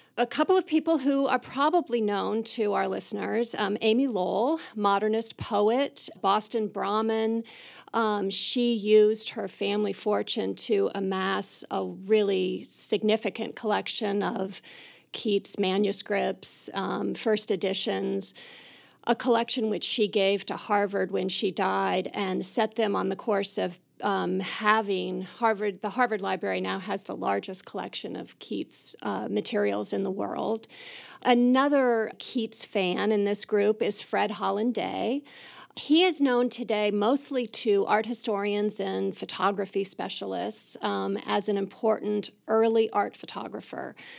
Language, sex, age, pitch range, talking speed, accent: English, female, 40-59, 200-230 Hz, 130 wpm, American